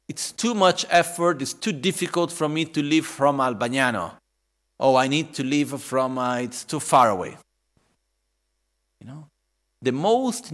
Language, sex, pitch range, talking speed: Italian, male, 110-165 Hz, 160 wpm